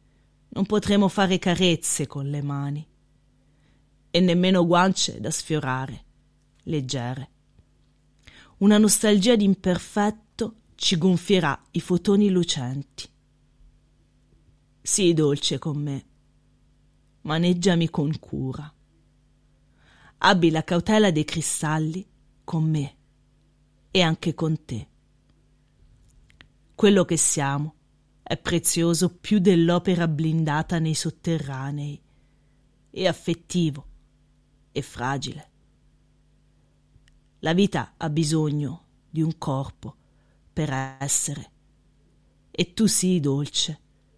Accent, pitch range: native, 145-180 Hz